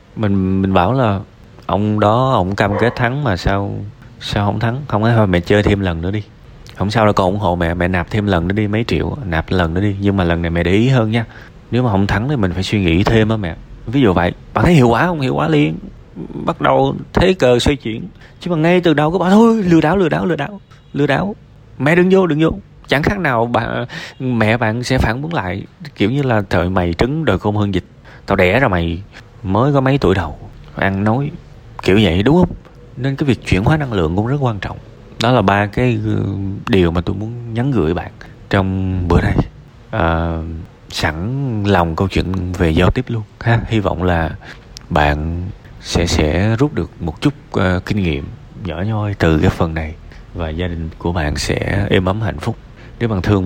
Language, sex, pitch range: Vietnamese, male, 90-125 Hz